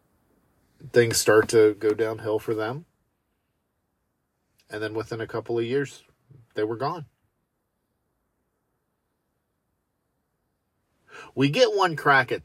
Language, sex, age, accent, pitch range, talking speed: English, male, 40-59, American, 135-210 Hz, 105 wpm